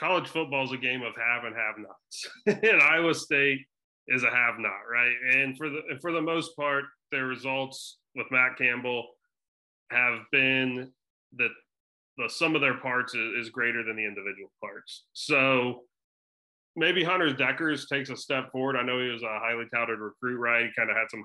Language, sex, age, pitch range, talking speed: English, male, 30-49, 115-140 Hz, 185 wpm